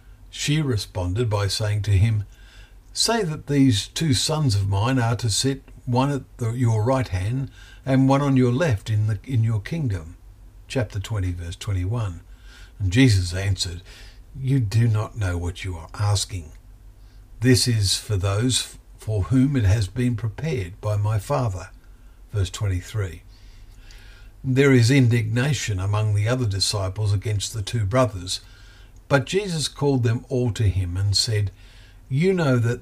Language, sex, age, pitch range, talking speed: English, male, 50-69, 95-125 Hz, 155 wpm